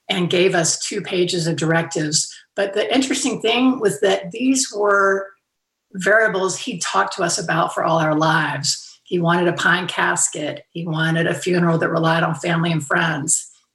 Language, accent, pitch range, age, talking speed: English, American, 165-205 Hz, 40-59, 175 wpm